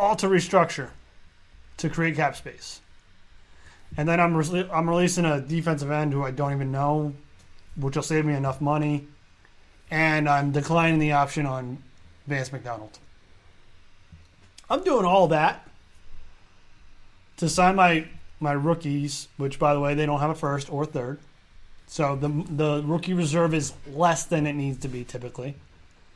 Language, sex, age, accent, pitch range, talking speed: English, male, 20-39, American, 95-160 Hz, 155 wpm